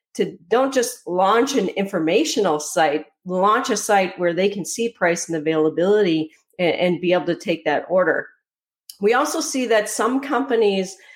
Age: 40-59